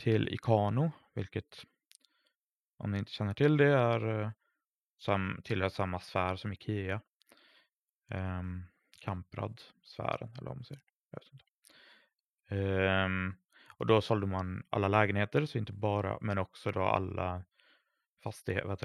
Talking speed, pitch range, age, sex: 110 wpm, 100-120 Hz, 20-39, male